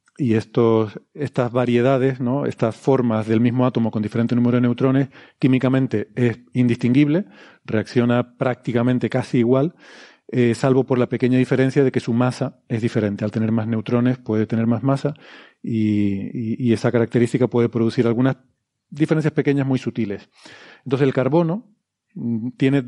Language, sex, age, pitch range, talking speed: Spanish, male, 40-59, 115-135 Hz, 150 wpm